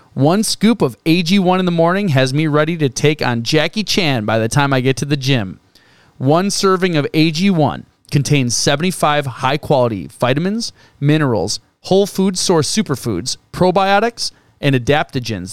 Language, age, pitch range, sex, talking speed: English, 30-49, 135-175 Hz, male, 150 wpm